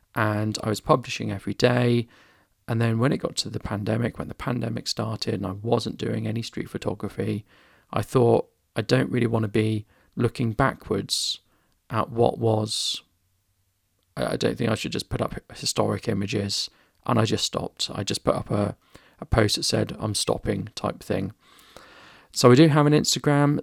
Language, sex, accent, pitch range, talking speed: English, male, British, 105-120 Hz, 180 wpm